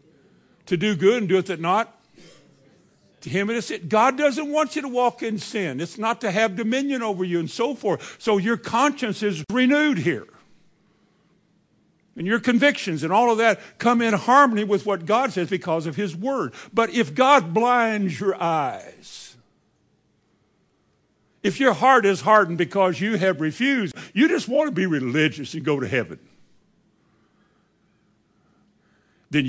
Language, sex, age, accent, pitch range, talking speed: English, male, 60-79, American, 160-230 Hz, 165 wpm